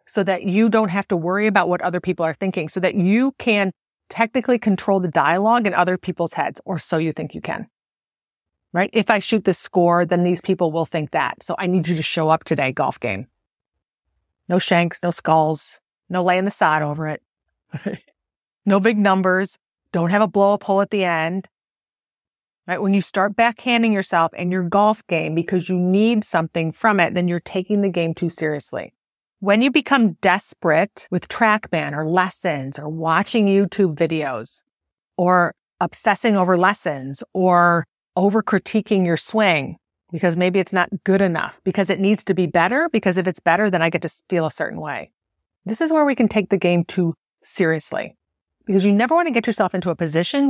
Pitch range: 170-210 Hz